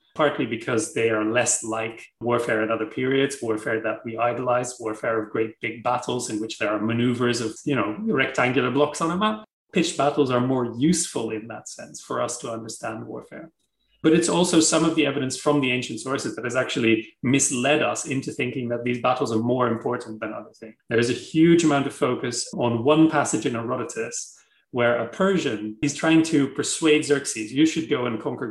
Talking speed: 205 wpm